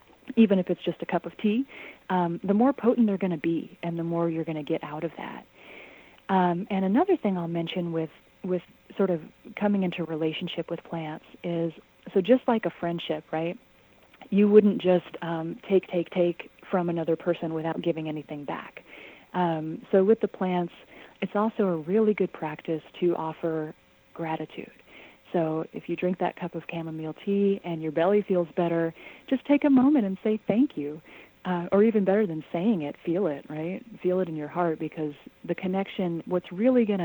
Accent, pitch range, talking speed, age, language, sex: American, 160-200 Hz, 195 wpm, 30-49, English, female